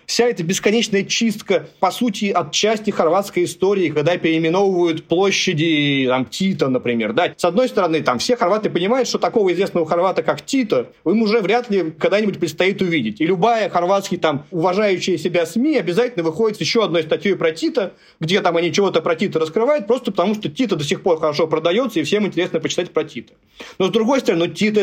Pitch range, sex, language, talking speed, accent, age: 160-210 Hz, male, Russian, 190 wpm, native, 30-49